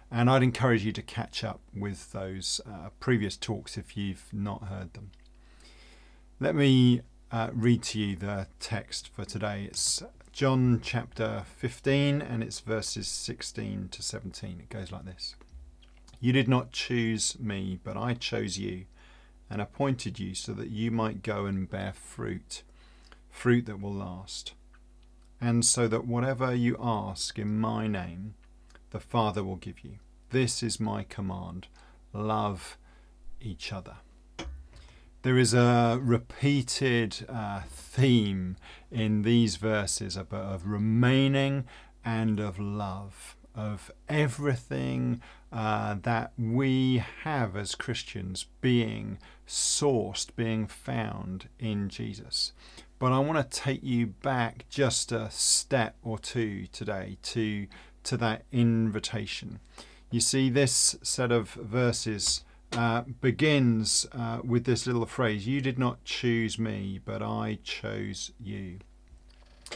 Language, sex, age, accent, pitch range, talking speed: English, male, 40-59, British, 100-120 Hz, 130 wpm